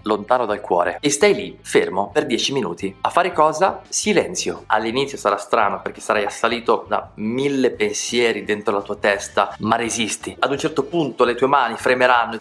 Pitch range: 115-150 Hz